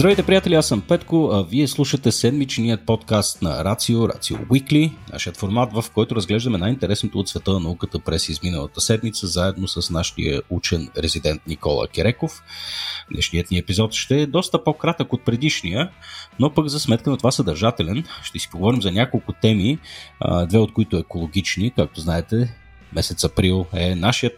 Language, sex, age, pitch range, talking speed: Bulgarian, male, 30-49, 85-125 Hz, 160 wpm